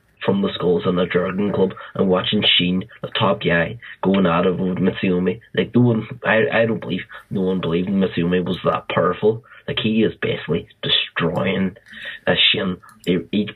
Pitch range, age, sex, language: 90-110 Hz, 20-39, male, English